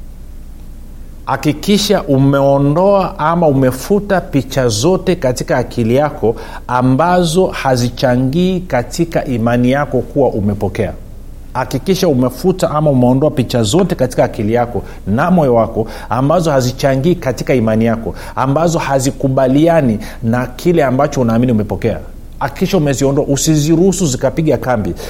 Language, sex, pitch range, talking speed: Swahili, male, 120-155 Hz, 110 wpm